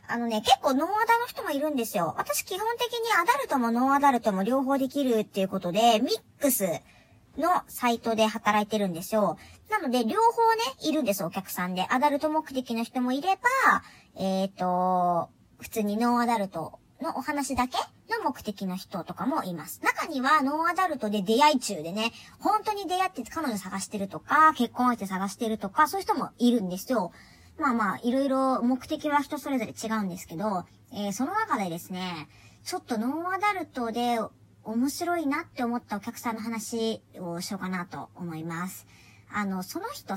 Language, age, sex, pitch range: Japanese, 40-59, male, 200-310 Hz